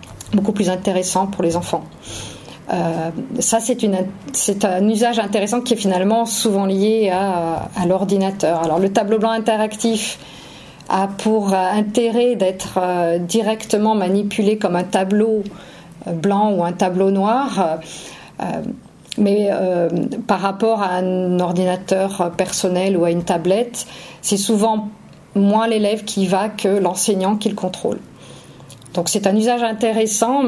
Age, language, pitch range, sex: 50-69, French, 185-220 Hz, female